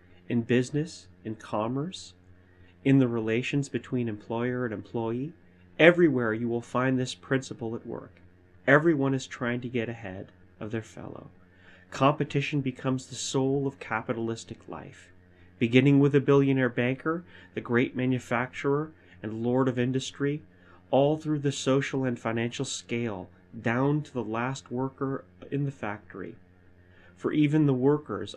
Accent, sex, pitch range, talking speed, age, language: American, male, 90-130 Hz, 140 wpm, 30-49, English